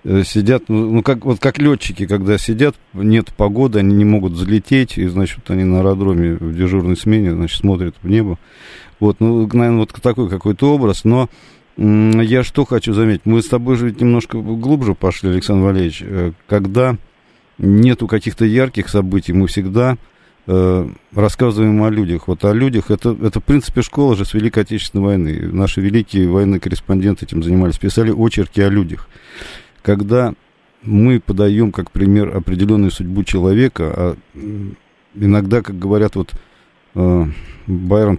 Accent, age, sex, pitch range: native, 50-69, male, 95-115 Hz